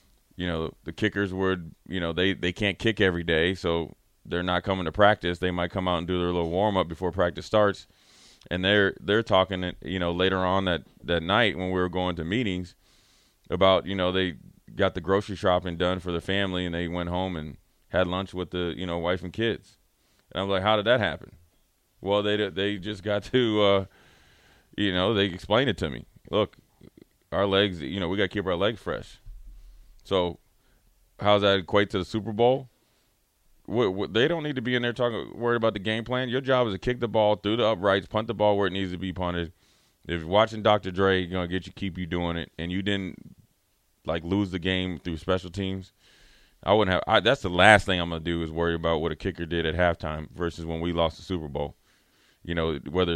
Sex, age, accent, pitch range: male, 30-49, American, 85-105 Hz